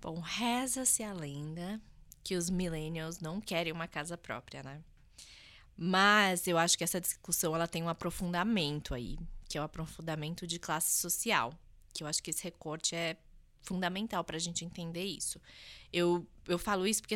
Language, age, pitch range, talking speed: Portuguese, 20-39, 155-190 Hz, 175 wpm